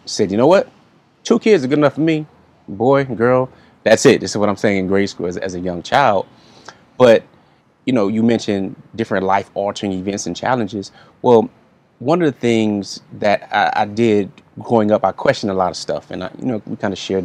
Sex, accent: male, American